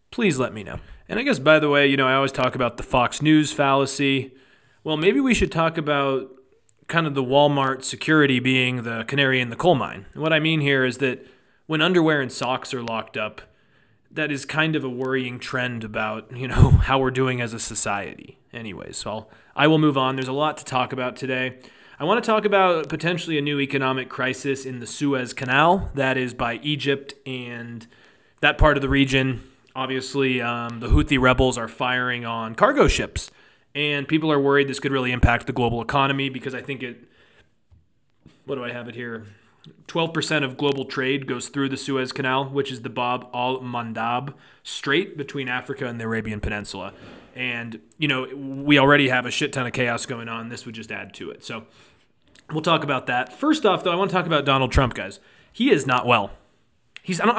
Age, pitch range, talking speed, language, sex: 30-49, 125-145 Hz, 205 wpm, English, male